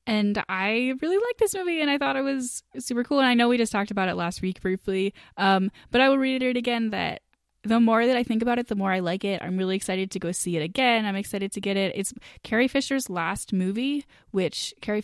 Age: 10-29